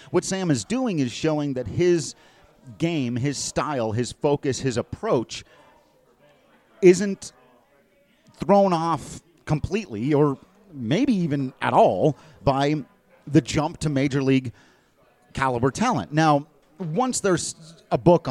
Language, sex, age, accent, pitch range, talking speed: English, male, 40-59, American, 130-170 Hz, 120 wpm